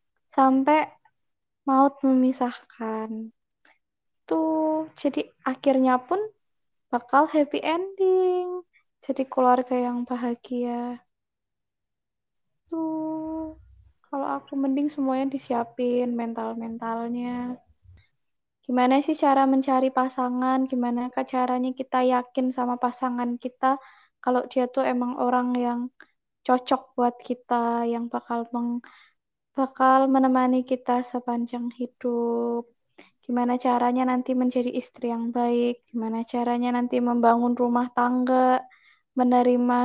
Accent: native